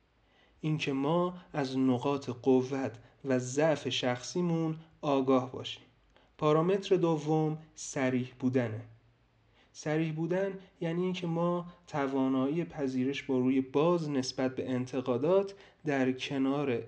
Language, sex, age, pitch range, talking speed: Persian, male, 40-59, 130-160 Hz, 100 wpm